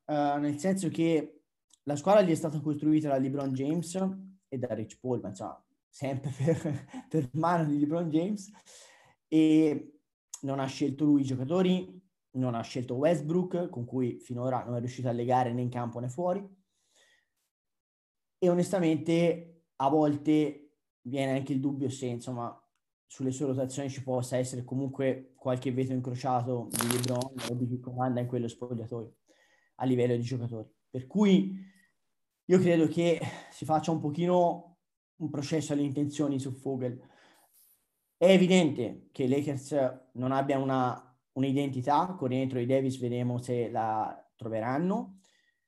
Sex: male